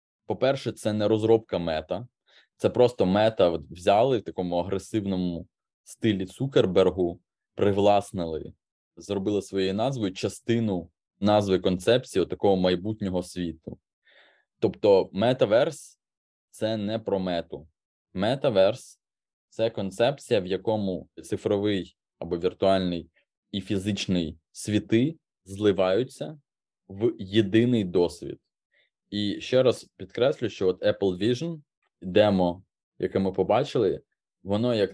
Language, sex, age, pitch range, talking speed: Ukrainian, male, 20-39, 95-110 Hz, 105 wpm